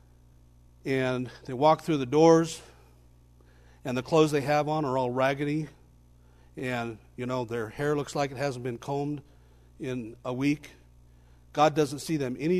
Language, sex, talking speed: English, male, 160 wpm